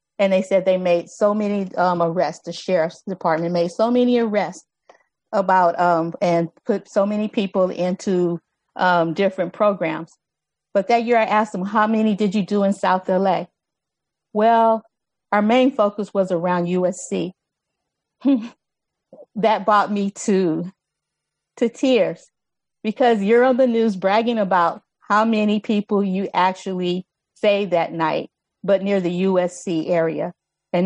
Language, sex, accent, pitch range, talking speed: English, female, American, 175-210 Hz, 145 wpm